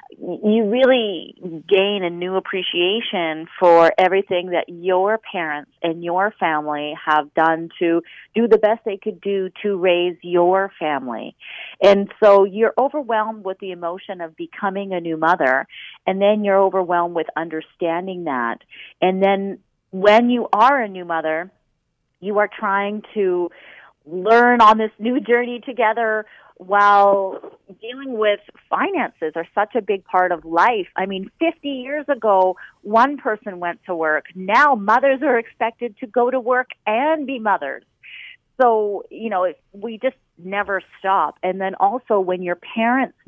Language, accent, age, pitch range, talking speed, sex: English, American, 40-59, 175-220 Hz, 155 wpm, female